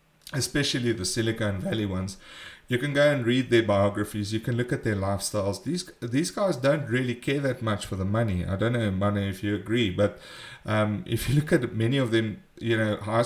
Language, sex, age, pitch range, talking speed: English, male, 30-49, 100-115 Hz, 215 wpm